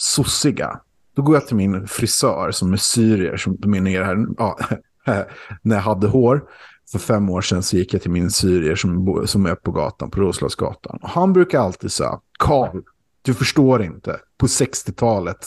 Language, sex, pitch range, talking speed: English, male, 100-140 Hz, 190 wpm